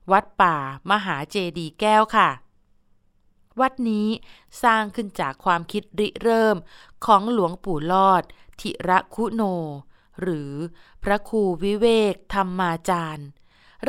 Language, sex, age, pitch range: Thai, female, 20-39, 170-215 Hz